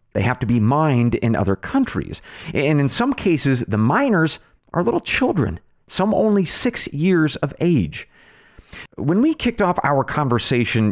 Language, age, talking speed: English, 40-59, 160 wpm